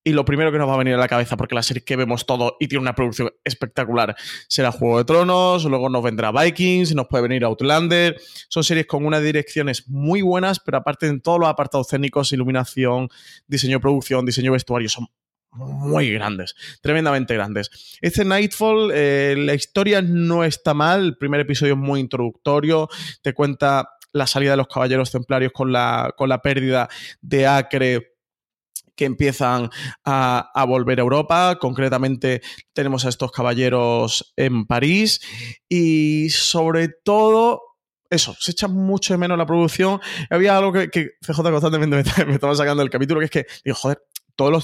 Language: Spanish